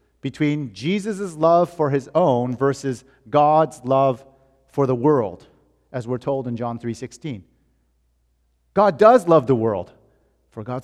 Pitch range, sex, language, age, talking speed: 120-160 Hz, male, English, 40-59, 140 wpm